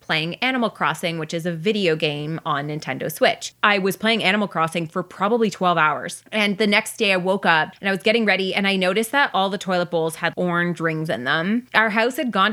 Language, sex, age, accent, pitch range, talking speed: English, female, 20-39, American, 185-230 Hz, 235 wpm